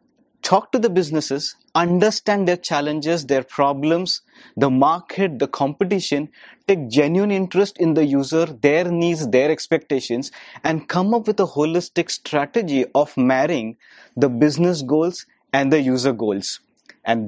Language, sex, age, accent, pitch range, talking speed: English, male, 30-49, Indian, 130-175 Hz, 140 wpm